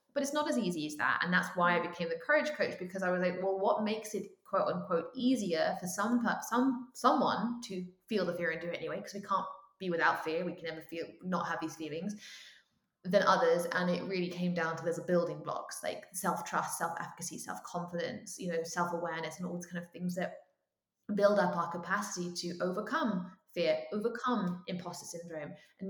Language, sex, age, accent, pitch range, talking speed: English, female, 20-39, British, 170-215 Hz, 205 wpm